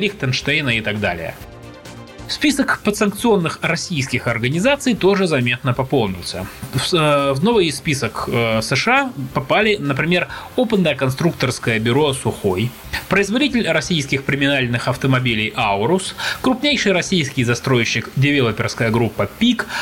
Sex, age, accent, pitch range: male, 20-39, native, 120-195 Hz